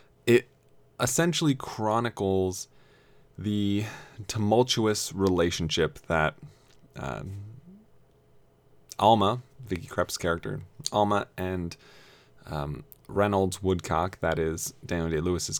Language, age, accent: English, 20-39, American